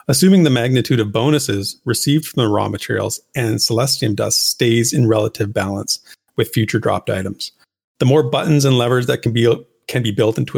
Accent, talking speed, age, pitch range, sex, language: American, 185 wpm, 40-59, 105-130 Hz, male, English